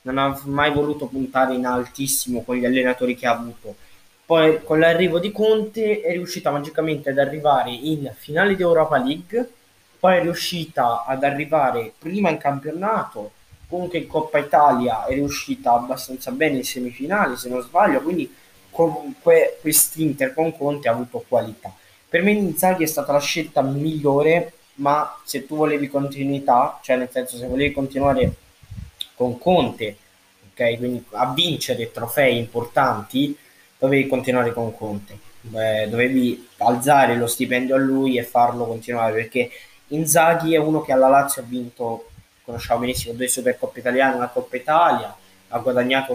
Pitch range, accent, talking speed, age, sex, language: 125-155 Hz, native, 155 wpm, 20-39, male, Italian